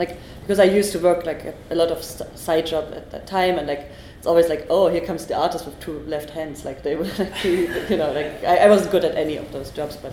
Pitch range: 140-165 Hz